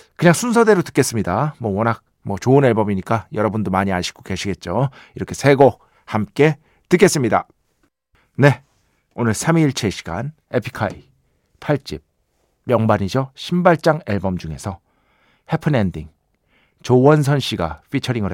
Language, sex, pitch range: Korean, male, 105-145 Hz